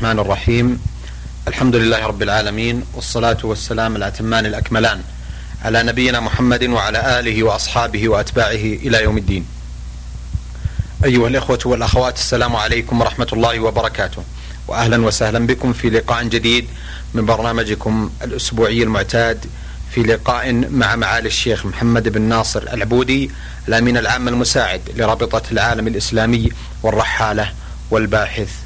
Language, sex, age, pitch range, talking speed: Arabic, male, 40-59, 105-120 Hz, 115 wpm